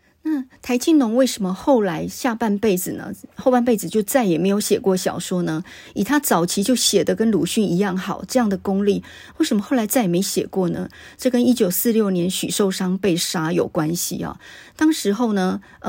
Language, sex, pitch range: Chinese, female, 180-215 Hz